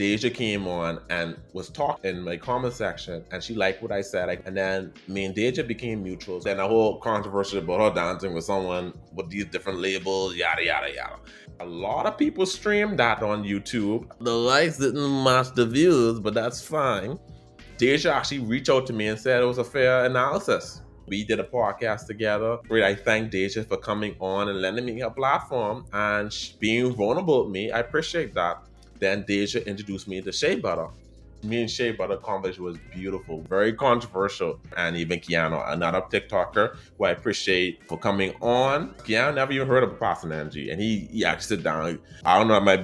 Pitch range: 95-120 Hz